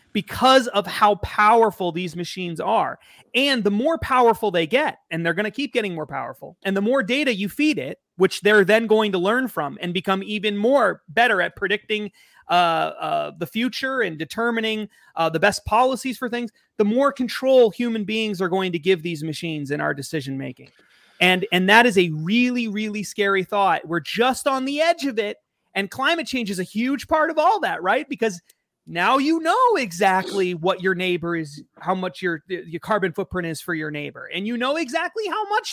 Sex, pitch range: male, 185-270 Hz